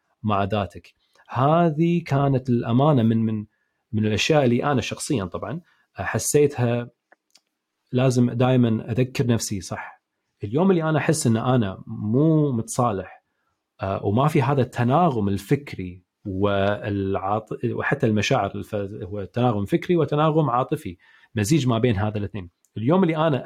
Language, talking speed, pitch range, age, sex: Arabic, 125 wpm, 110-145 Hz, 30-49, male